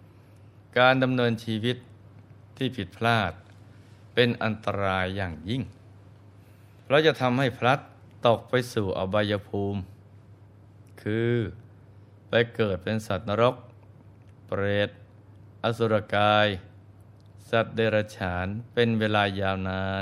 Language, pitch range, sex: Thai, 100-115 Hz, male